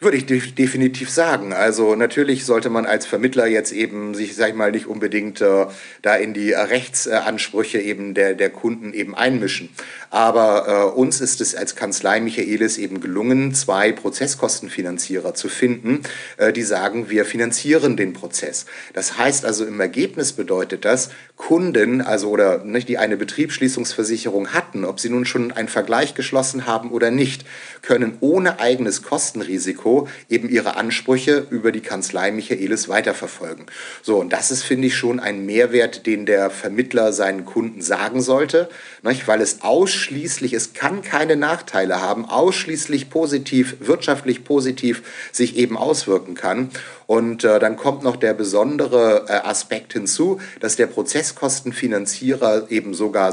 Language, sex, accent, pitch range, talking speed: German, male, German, 110-130 Hz, 150 wpm